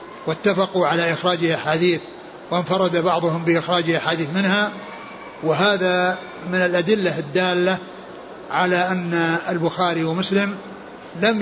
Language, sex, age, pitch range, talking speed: Arabic, male, 60-79, 180-220 Hz, 95 wpm